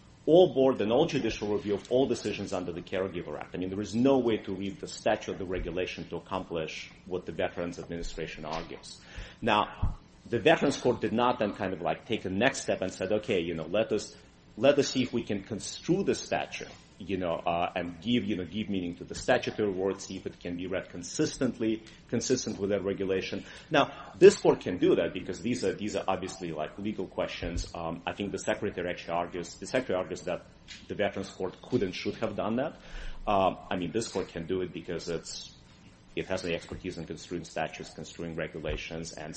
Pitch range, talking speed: 85-105 Hz, 215 wpm